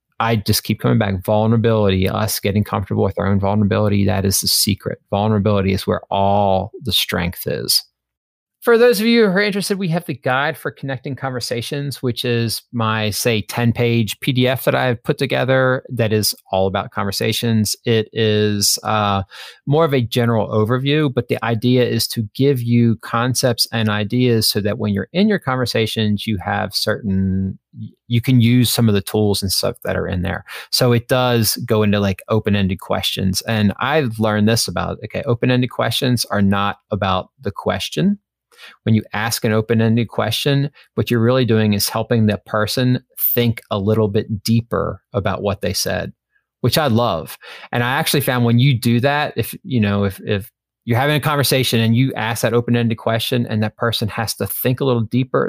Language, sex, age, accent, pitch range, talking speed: English, male, 30-49, American, 105-125 Hz, 190 wpm